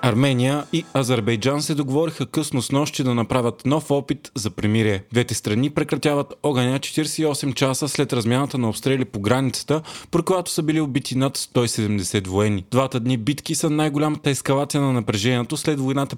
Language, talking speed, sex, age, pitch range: Bulgarian, 165 wpm, male, 30-49, 120-150 Hz